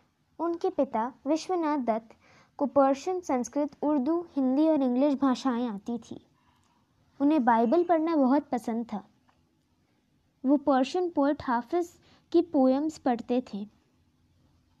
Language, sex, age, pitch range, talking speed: Hindi, female, 20-39, 245-300 Hz, 115 wpm